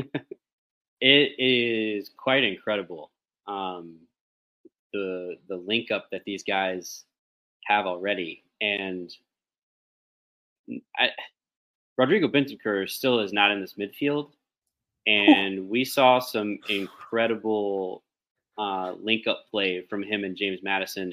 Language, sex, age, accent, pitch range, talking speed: English, male, 20-39, American, 95-125 Hz, 110 wpm